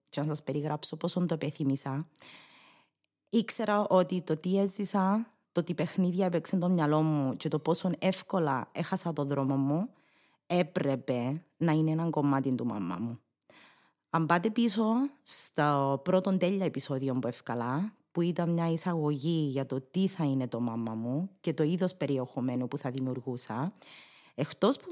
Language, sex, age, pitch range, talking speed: Greek, female, 30-49, 145-190 Hz, 160 wpm